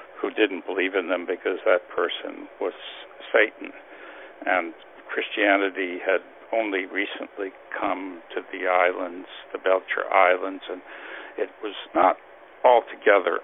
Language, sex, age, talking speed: English, male, 60-79, 120 wpm